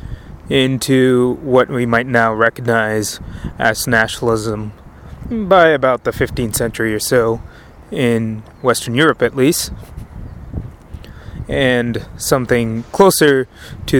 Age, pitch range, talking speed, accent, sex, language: 20-39, 105-150 Hz, 105 wpm, American, male, English